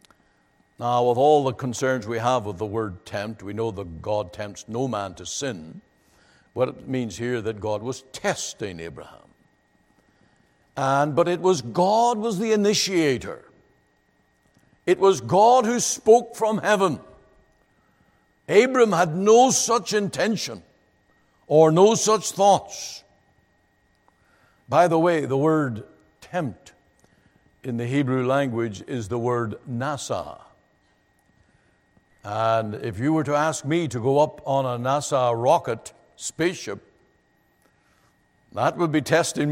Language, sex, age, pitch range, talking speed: English, male, 60-79, 115-175 Hz, 135 wpm